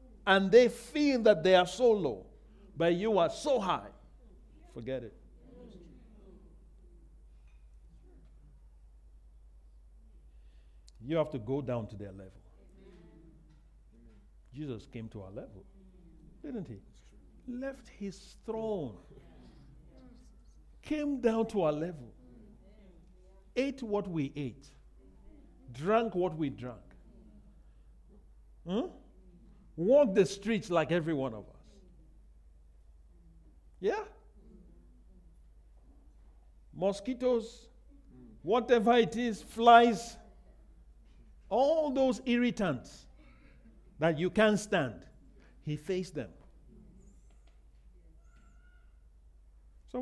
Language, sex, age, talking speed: English, male, 50-69, 90 wpm